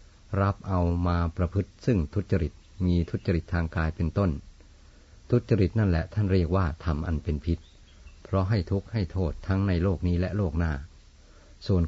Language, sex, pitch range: Thai, male, 80-95 Hz